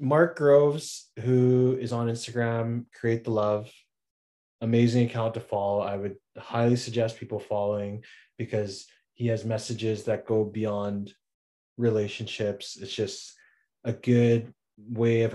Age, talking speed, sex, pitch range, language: 20-39, 130 wpm, male, 105-115 Hz, English